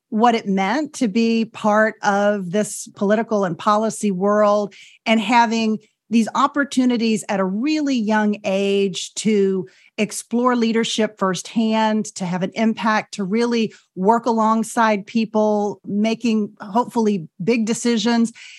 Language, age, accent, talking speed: English, 40-59, American, 125 wpm